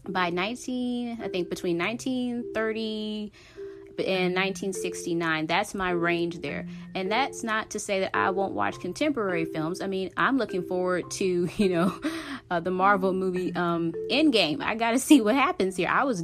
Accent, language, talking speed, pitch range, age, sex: American, English, 165 wpm, 165-215 Hz, 30-49, female